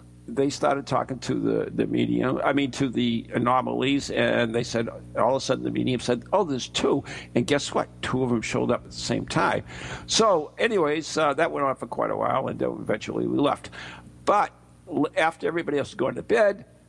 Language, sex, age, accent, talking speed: English, male, 60-79, American, 215 wpm